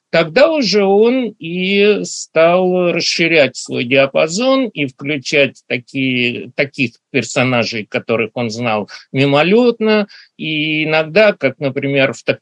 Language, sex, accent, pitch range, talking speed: Russian, male, native, 125-175 Hz, 105 wpm